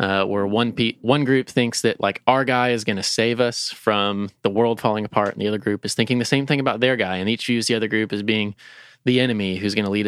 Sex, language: male, English